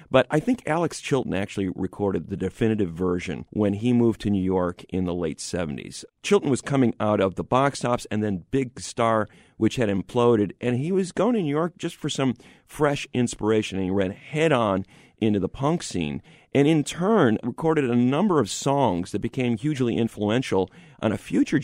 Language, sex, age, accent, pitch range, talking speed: English, male, 40-59, American, 100-135 Hz, 195 wpm